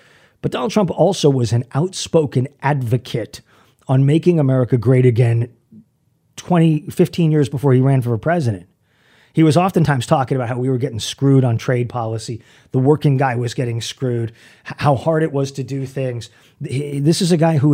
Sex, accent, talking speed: male, American, 175 wpm